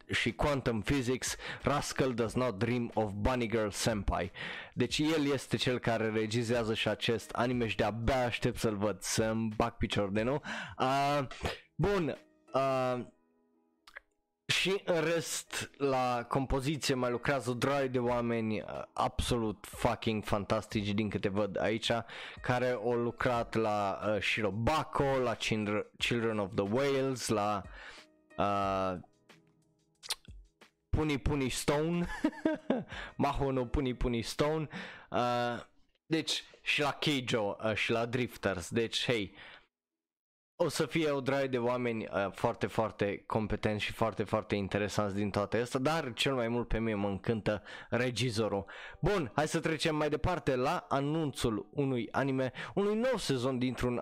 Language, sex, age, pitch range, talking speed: Romanian, male, 20-39, 105-140 Hz, 130 wpm